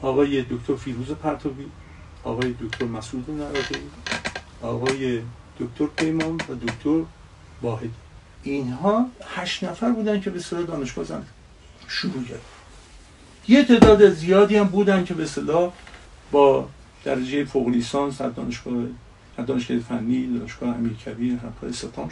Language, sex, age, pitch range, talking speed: Persian, male, 50-69, 115-150 Hz, 115 wpm